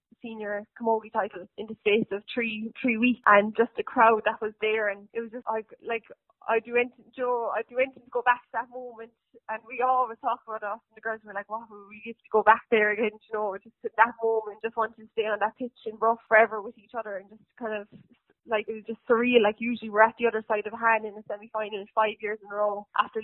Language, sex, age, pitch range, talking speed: English, female, 10-29, 210-230 Hz, 260 wpm